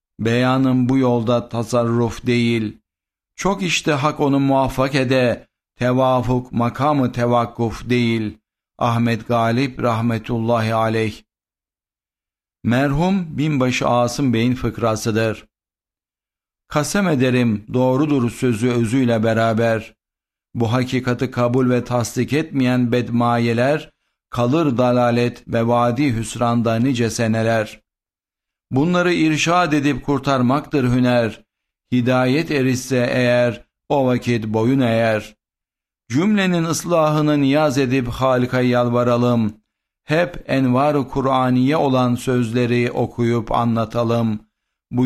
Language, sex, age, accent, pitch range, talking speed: Turkish, male, 60-79, native, 115-135 Hz, 95 wpm